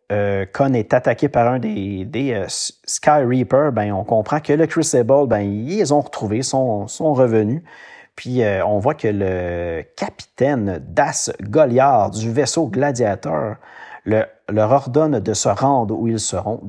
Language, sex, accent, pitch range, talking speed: French, male, Canadian, 105-150 Hz, 160 wpm